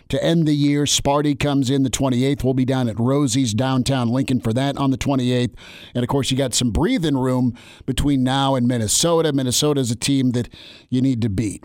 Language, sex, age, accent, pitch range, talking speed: English, male, 50-69, American, 125-145 Hz, 215 wpm